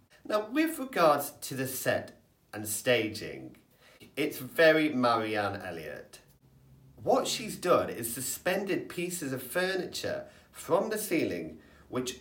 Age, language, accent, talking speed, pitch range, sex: 30-49, English, British, 120 wpm, 115-180 Hz, male